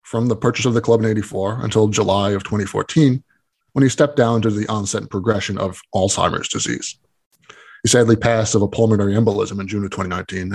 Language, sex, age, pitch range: English, male, 20-39, 105-130 Hz